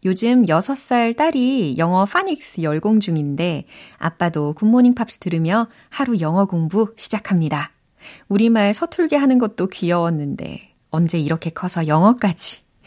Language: Korean